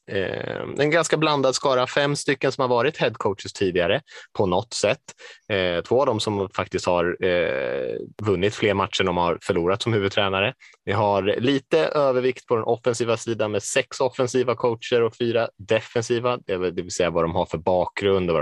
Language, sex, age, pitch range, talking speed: Swedish, male, 20-39, 100-125 Hz, 175 wpm